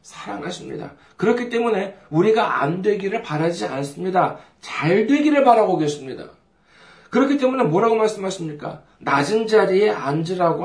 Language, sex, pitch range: Korean, male, 155-235 Hz